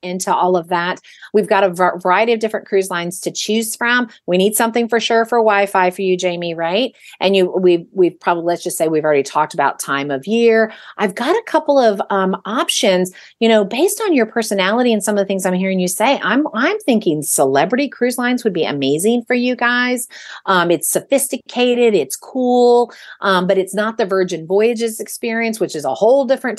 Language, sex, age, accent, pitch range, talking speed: English, female, 40-59, American, 180-235 Hz, 210 wpm